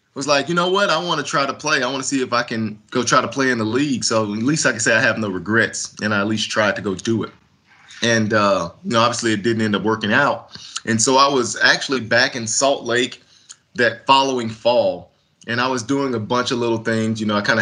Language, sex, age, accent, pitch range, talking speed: English, male, 20-39, American, 110-130 Hz, 275 wpm